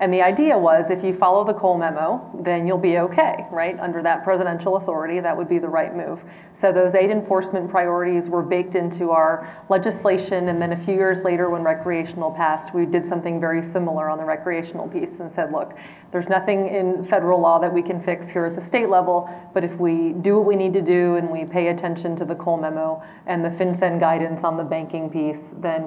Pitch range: 170-190 Hz